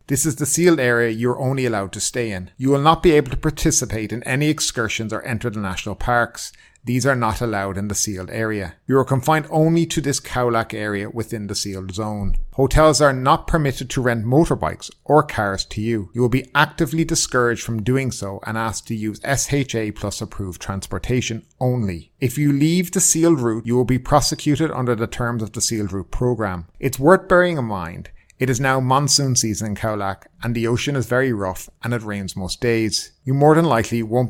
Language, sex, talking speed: English, male, 210 wpm